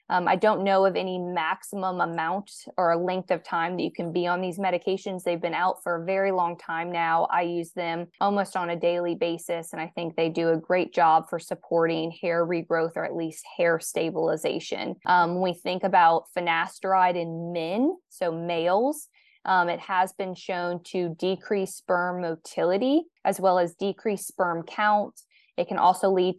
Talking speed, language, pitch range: 190 wpm, English, 170-195 Hz